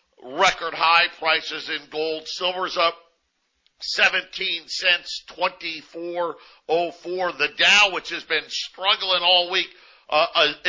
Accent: American